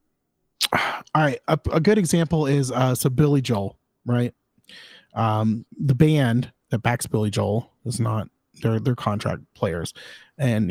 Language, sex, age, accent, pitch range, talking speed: English, male, 30-49, American, 110-140 Hz, 145 wpm